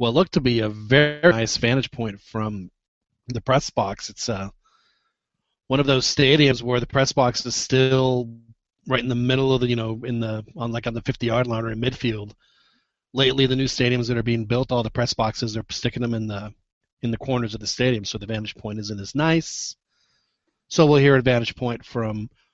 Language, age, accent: English, 40-59, American